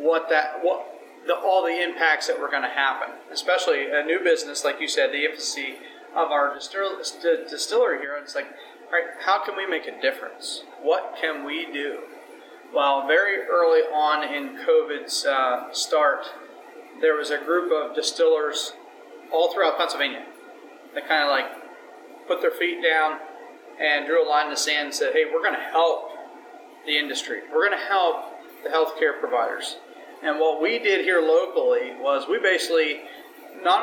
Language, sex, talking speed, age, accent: English, male, 170 wpm, 40-59, American